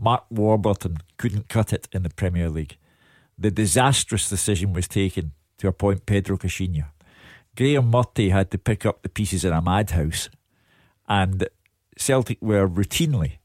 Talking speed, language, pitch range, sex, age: 145 wpm, English, 95-115 Hz, male, 50-69